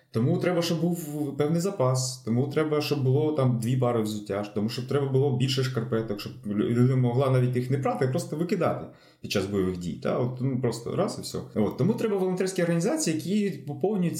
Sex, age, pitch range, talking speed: male, 20-39, 120-170 Hz, 200 wpm